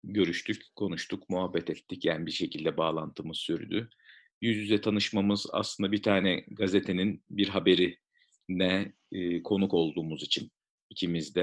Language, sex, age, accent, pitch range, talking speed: Turkish, male, 50-69, native, 90-110 Hz, 125 wpm